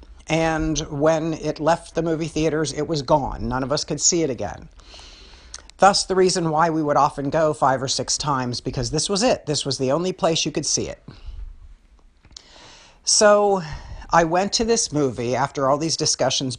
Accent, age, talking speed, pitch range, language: American, 50-69, 190 wpm, 140-170 Hz, English